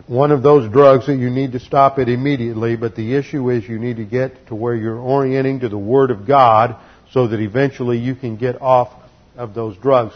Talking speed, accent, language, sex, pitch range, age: 225 wpm, American, English, male, 115-135 Hz, 50-69